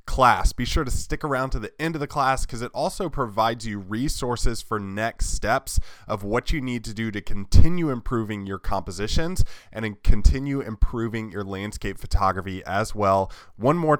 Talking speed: 180 wpm